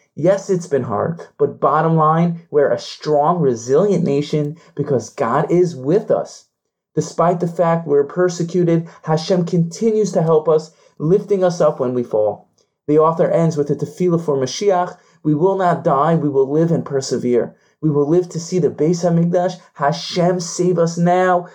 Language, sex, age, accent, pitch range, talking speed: English, male, 30-49, American, 145-180 Hz, 175 wpm